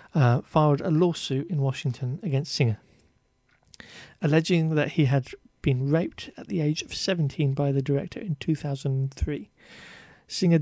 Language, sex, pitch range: English, male, 135-165 Hz